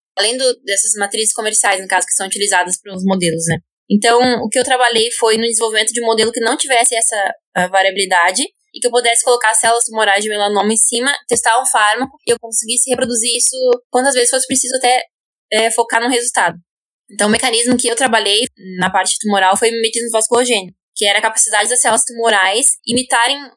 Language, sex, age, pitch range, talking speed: Portuguese, female, 10-29, 205-245 Hz, 200 wpm